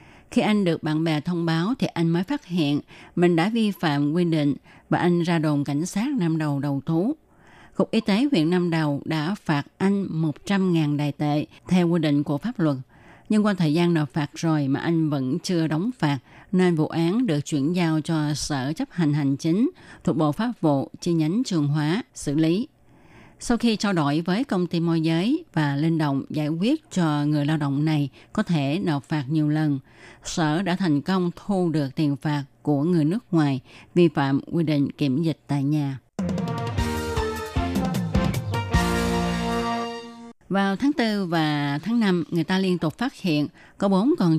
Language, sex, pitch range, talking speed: Vietnamese, female, 145-180 Hz, 190 wpm